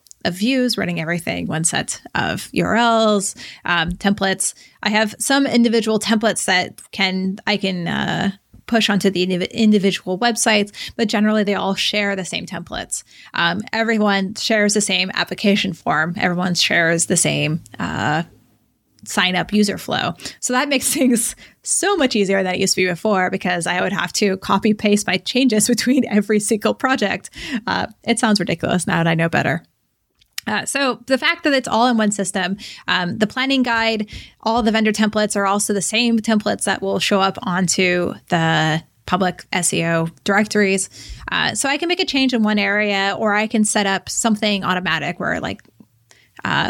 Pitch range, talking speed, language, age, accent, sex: 185-225 Hz, 175 wpm, English, 20-39, American, female